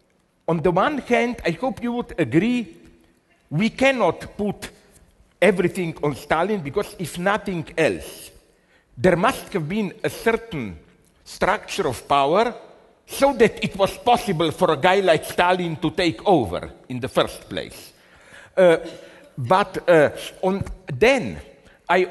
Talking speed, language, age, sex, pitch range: 135 wpm, English, 60-79, male, 150-210 Hz